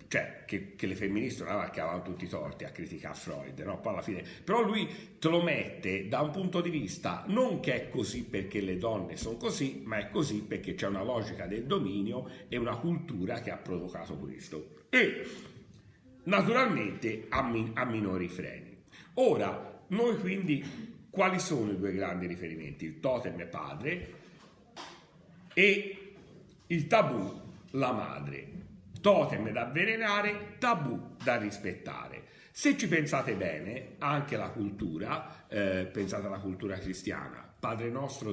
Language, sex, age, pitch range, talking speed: Italian, male, 50-69, 105-170 Hz, 155 wpm